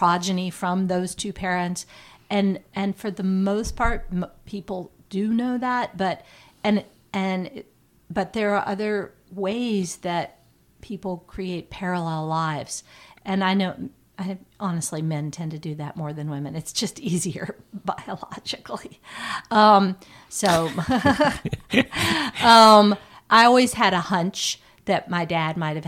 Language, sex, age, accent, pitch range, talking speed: English, female, 40-59, American, 160-195 Hz, 130 wpm